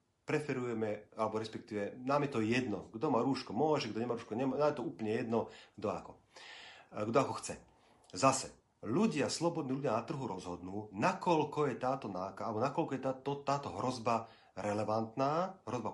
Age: 40-59